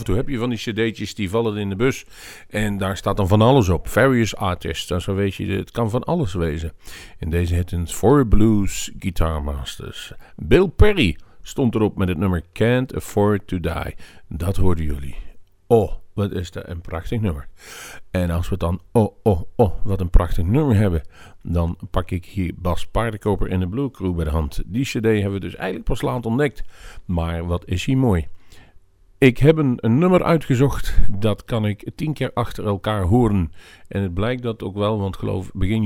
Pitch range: 85-110 Hz